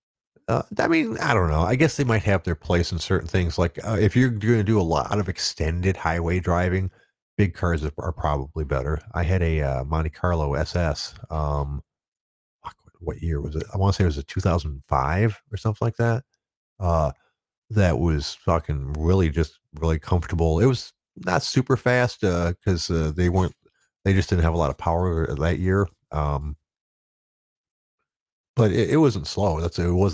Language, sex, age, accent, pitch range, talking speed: English, male, 40-59, American, 80-100 Hz, 190 wpm